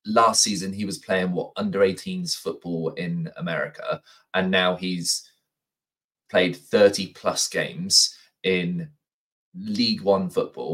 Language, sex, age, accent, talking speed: English, male, 20-39, British, 125 wpm